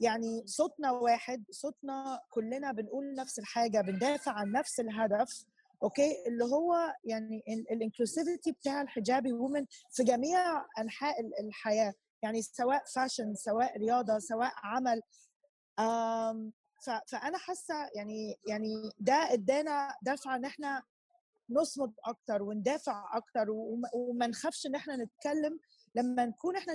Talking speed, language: 120 wpm, Arabic